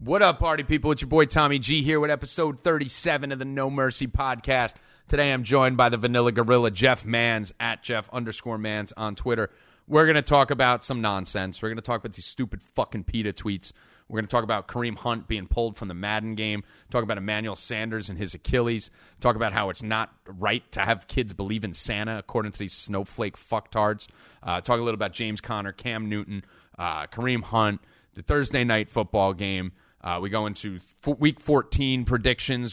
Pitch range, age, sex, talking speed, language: 100-130 Hz, 30-49, male, 205 wpm, English